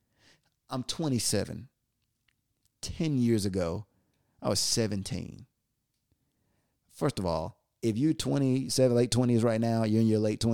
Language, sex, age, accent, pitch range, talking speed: English, male, 30-49, American, 105-130 Hz, 125 wpm